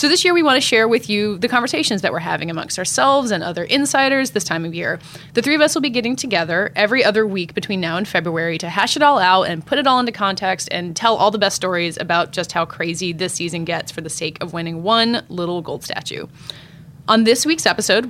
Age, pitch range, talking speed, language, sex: 20-39, 175-235 Hz, 250 wpm, English, female